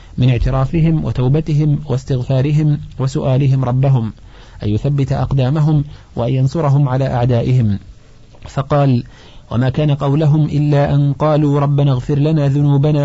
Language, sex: Arabic, male